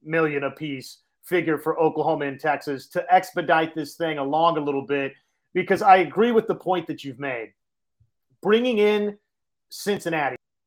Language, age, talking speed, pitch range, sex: English, 30-49, 155 wpm, 160-210 Hz, male